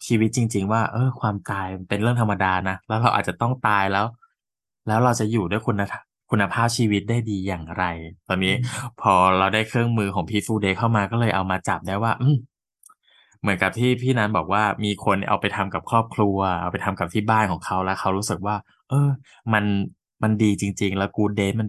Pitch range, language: 95-115 Hz, Thai